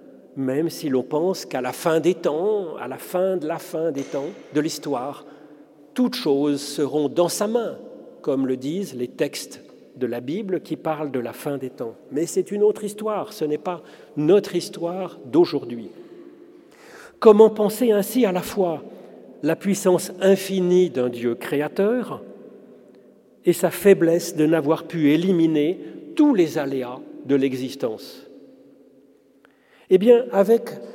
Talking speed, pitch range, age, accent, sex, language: 150 wpm, 150-210 Hz, 40-59, French, male, French